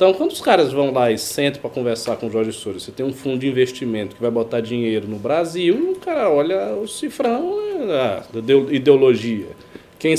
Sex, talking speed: male, 205 wpm